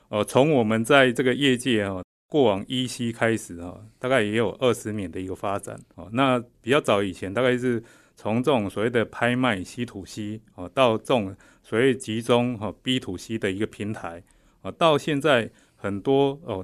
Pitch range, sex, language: 95-125 Hz, male, Chinese